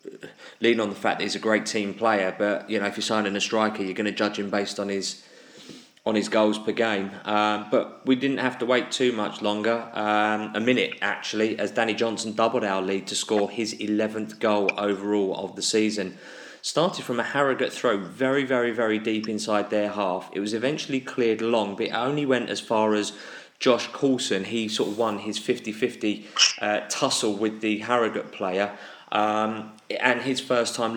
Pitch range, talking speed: 105-120 Hz, 200 wpm